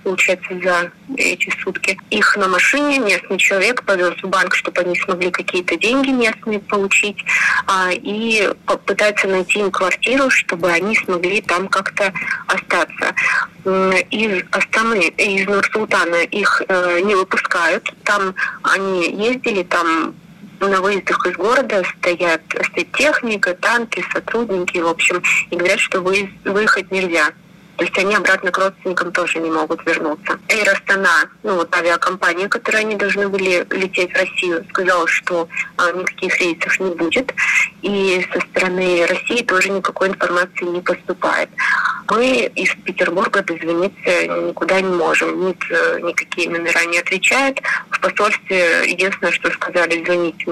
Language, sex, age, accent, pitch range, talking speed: Russian, female, 20-39, native, 175-200 Hz, 135 wpm